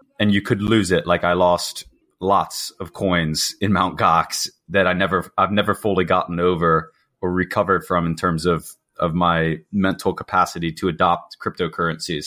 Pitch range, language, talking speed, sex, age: 90-100 Hz, English, 170 wpm, male, 20-39